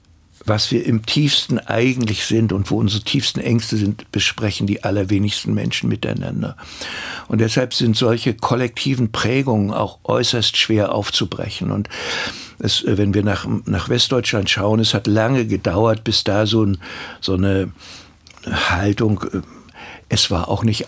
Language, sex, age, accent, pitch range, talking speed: German, male, 60-79, German, 105-125 Hz, 140 wpm